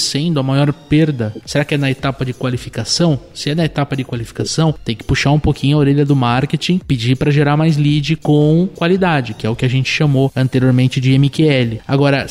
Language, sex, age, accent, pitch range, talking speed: Portuguese, male, 20-39, Brazilian, 130-160 Hz, 215 wpm